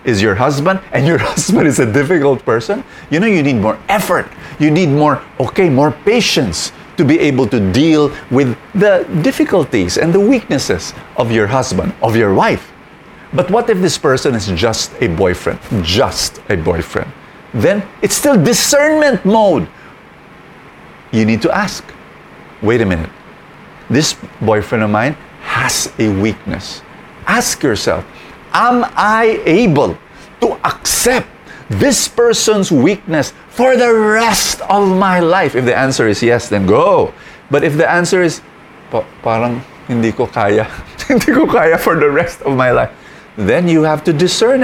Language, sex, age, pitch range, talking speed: English, male, 50-69, 130-210 Hz, 155 wpm